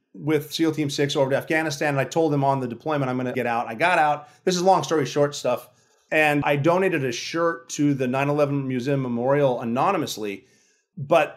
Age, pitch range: 30-49, 130-155 Hz